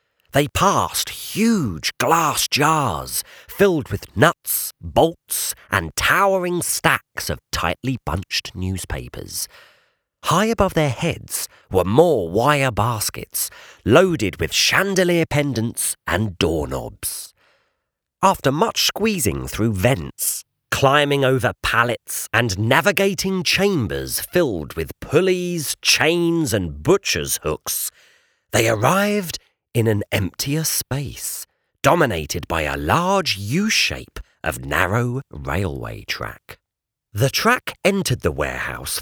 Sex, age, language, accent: male, 40-59, English, British